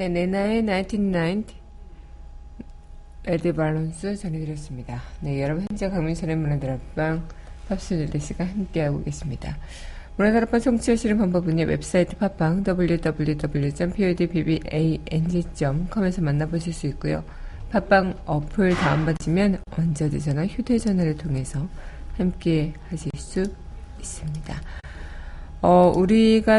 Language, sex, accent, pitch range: Korean, female, native, 150-190 Hz